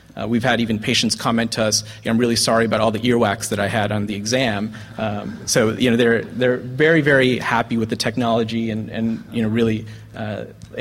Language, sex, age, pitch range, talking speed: English, male, 30-49, 110-125 Hz, 215 wpm